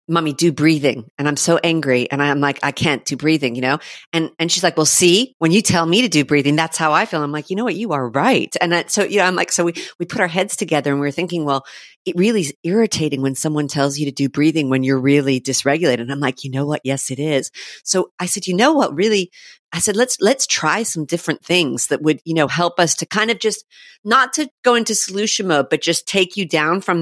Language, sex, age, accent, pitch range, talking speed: English, female, 40-59, American, 150-190 Hz, 270 wpm